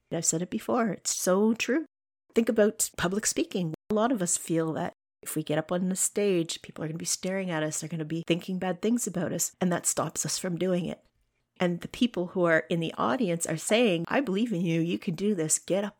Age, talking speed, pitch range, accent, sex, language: 30-49, 255 wpm, 155-185 Hz, American, female, English